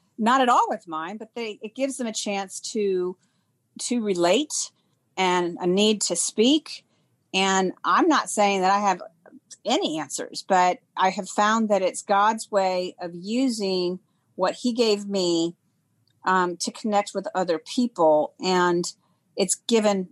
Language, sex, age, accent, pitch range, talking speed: English, female, 40-59, American, 185-245 Hz, 155 wpm